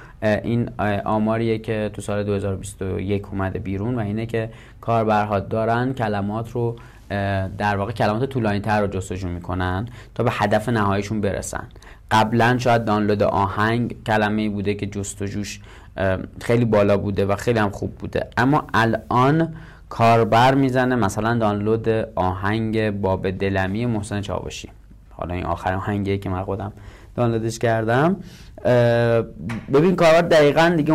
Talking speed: 130 wpm